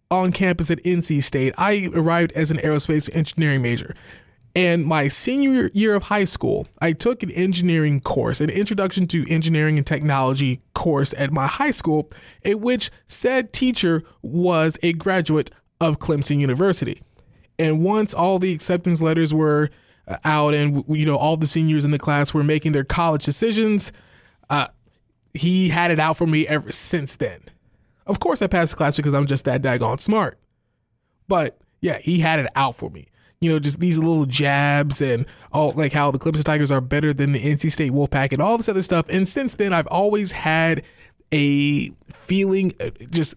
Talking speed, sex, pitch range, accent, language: 180 wpm, male, 145-180 Hz, American, English